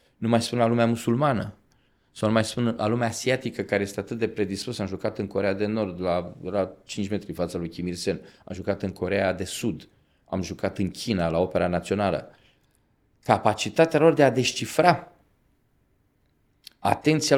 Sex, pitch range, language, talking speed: male, 100-120 Hz, Romanian, 180 wpm